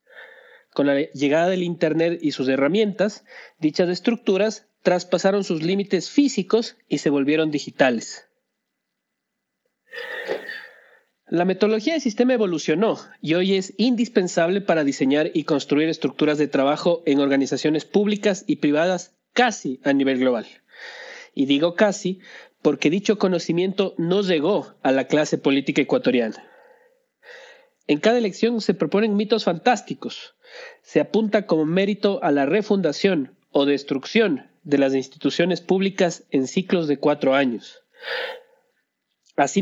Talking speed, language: 125 wpm, Spanish